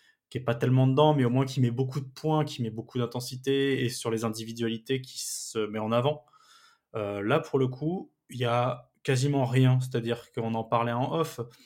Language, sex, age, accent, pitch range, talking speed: French, male, 20-39, French, 120-145 Hz, 215 wpm